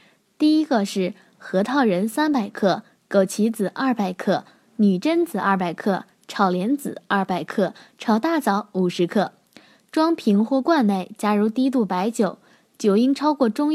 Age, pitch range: 10-29, 195-265 Hz